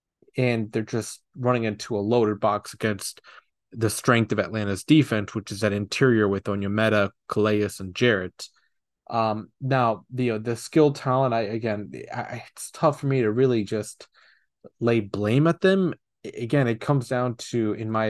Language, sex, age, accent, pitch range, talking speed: English, male, 20-39, American, 105-120 Hz, 170 wpm